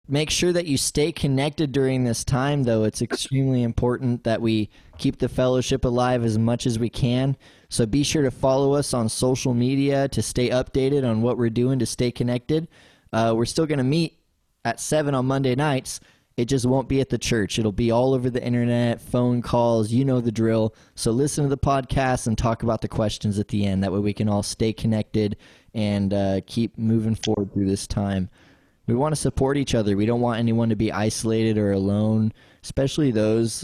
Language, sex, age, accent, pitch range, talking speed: English, male, 20-39, American, 110-130 Hz, 210 wpm